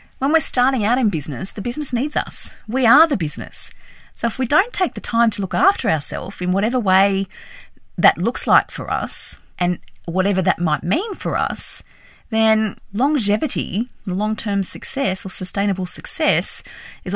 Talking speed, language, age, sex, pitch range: 170 wpm, English, 40-59, female, 150-220 Hz